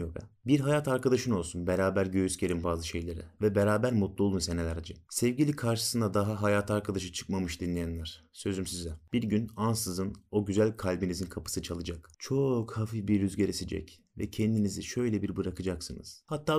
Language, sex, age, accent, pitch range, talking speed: Turkish, male, 30-49, native, 95-115 Hz, 150 wpm